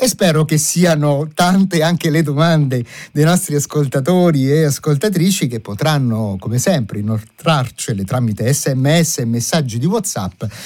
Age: 50-69